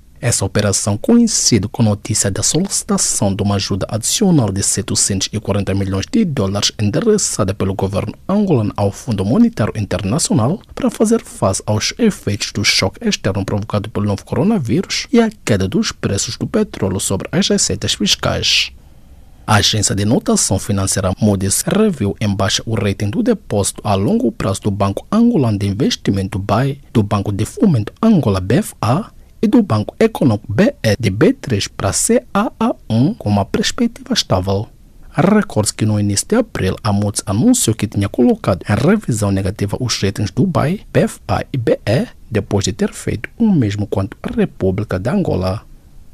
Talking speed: 160 wpm